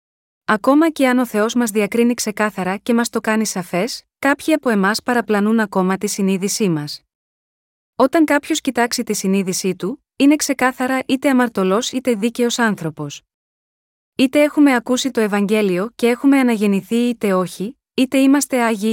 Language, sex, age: Greek, female, 20-39